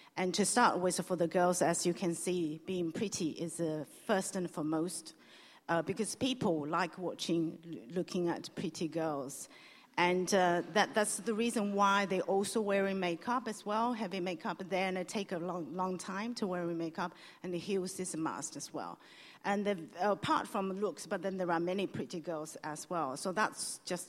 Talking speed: 190 wpm